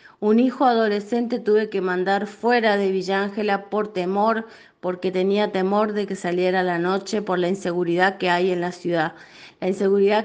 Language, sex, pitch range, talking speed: Spanish, female, 185-220 Hz, 170 wpm